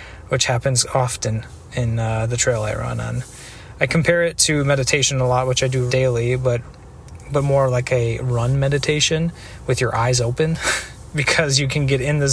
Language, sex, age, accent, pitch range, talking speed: English, male, 30-49, American, 120-135 Hz, 185 wpm